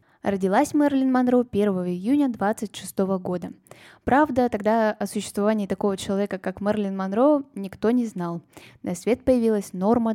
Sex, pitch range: female, 195-235 Hz